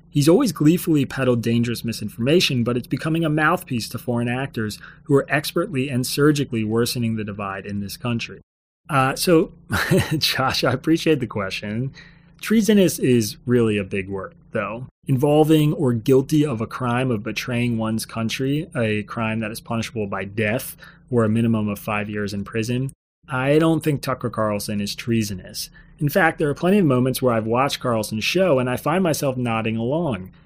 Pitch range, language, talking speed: 110-150 Hz, English, 175 wpm